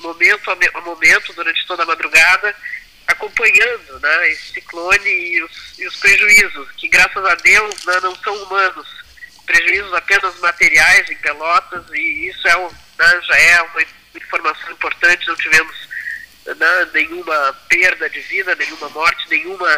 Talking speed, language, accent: 150 wpm, Portuguese, Brazilian